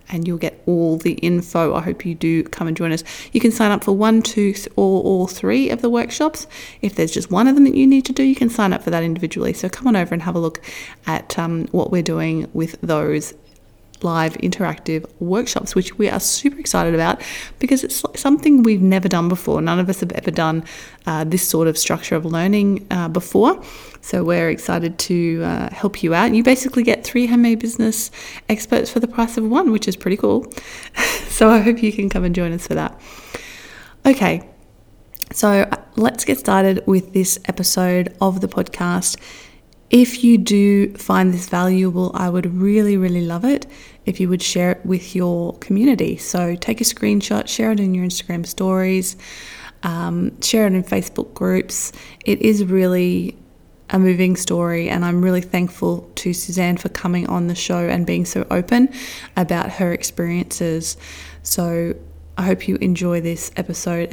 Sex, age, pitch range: female, 30-49, 170-210 Hz